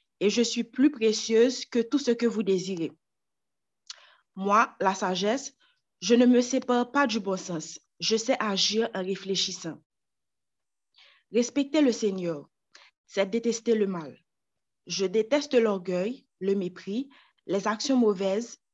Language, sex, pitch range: French, female, 190-240 Hz